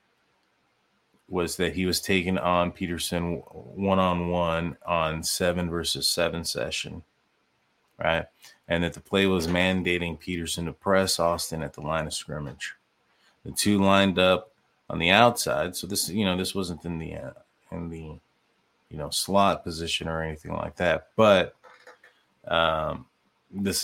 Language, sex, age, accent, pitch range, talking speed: English, male, 30-49, American, 85-95 Hz, 150 wpm